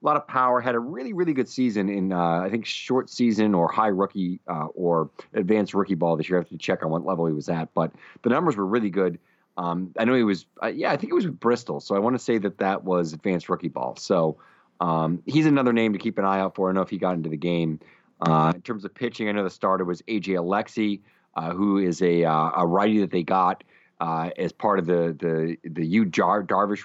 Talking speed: 265 wpm